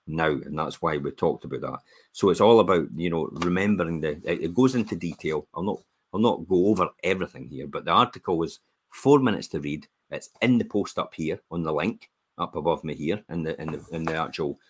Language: English